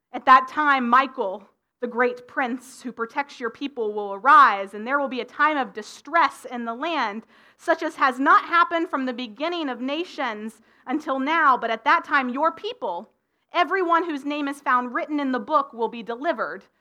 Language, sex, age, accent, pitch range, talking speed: English, female, 30-49, American, 240-300 Hz, 195 wpm